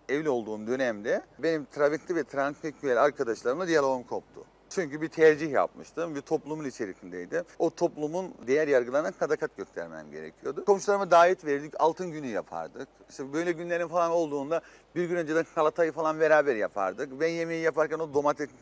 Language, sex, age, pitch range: Turkish, male, 40-59, 145-185 Hz